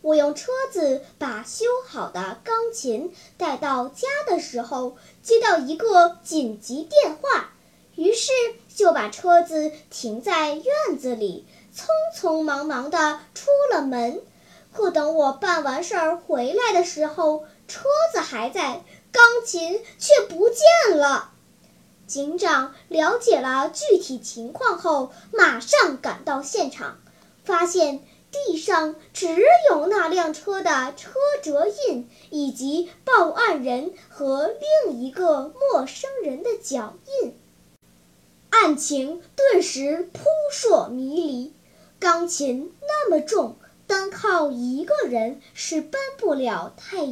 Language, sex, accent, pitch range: Chinese, male, native, 280-365 Hz